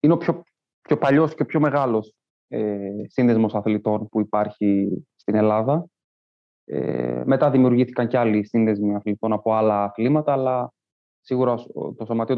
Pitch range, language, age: 105-130 Hz, Greek, 20-39